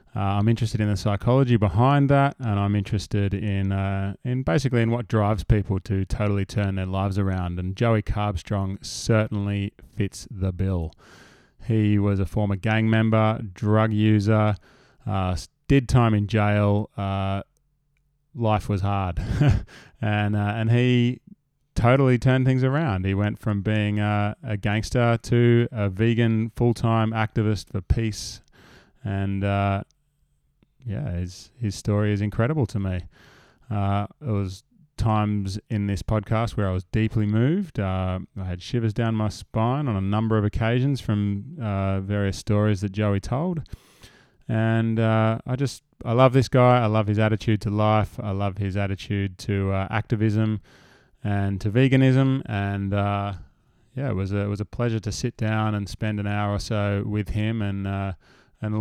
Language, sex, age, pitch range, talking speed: English, male, 20-39, 100-115 Hz, 165 wpm